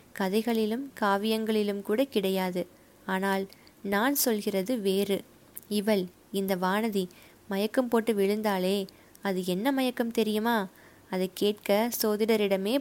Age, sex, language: 20-39, female, Tamil